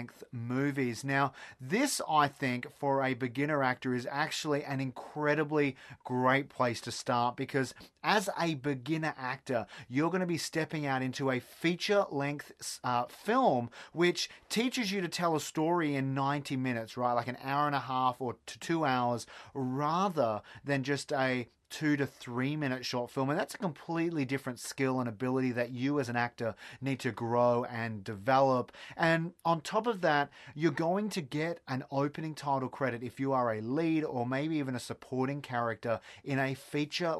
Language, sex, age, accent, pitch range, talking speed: English, male, 30-49, Australian, 125-150 Hz, 175 wpm